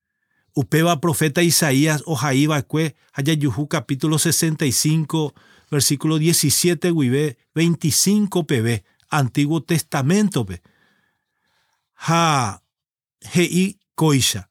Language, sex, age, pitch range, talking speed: English, male, 40-59, 145-175 Hz, 85 wpm